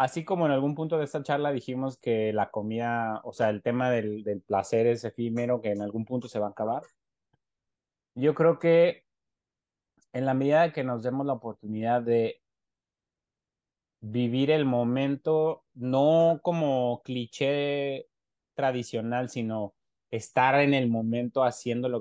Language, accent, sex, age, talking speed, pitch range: Spanish, Mexican, male, 30-49, 150 wpm, 115-135 Hz